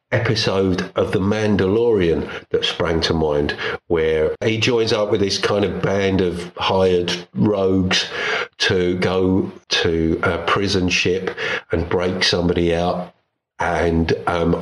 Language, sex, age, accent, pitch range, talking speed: English, male, 50-69, British, 90-125 Hz, 130 wpm